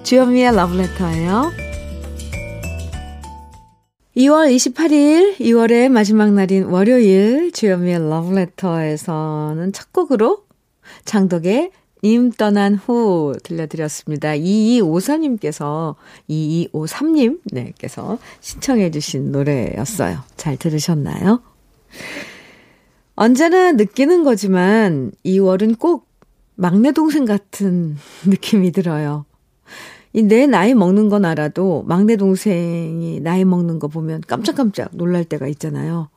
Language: Korean